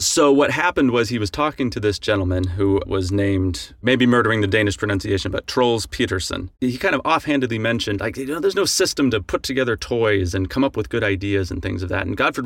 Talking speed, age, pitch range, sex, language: 230 wpm, 30-49, 95-120 Hz, male, English